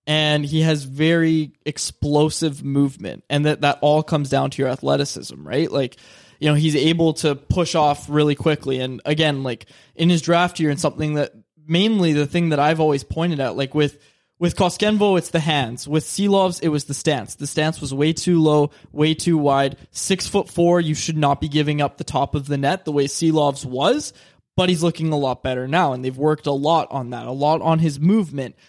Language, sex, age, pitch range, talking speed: English, male, 20-39, 145-170 Hz, 215 wpm